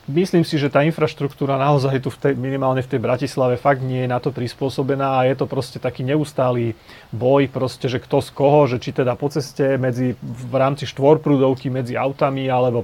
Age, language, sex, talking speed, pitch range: 30-49, Slovak, male, 200 wpm, 120-140 Hz